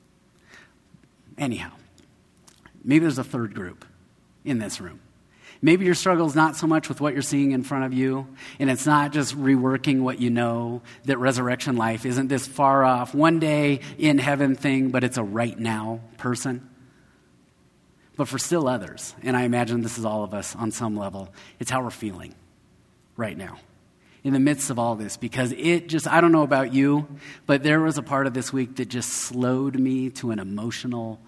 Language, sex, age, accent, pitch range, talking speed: English, male, 30-49, American, 115-145 Hz, 190 wpm